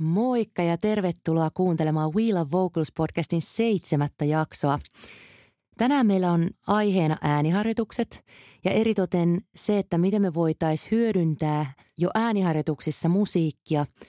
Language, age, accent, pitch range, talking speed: Finnish, 30-49, native, 150-185 Hz, 105 wpm